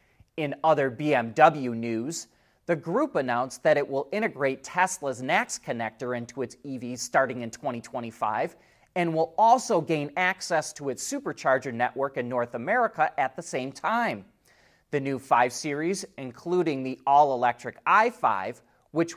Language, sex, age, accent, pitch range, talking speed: English, male, 30-49, American, 120-175 Hz, 140 wpm